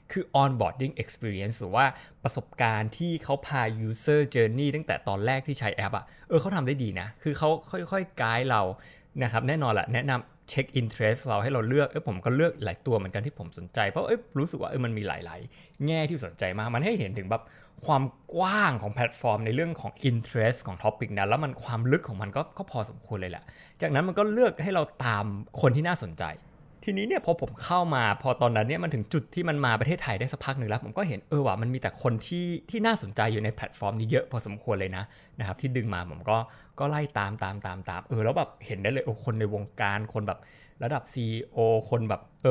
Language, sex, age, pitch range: Thai, male, 20-39, 110-145 Hz